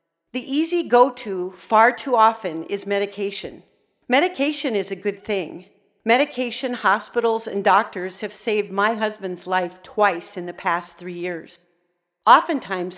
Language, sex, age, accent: English, female, 50-69, American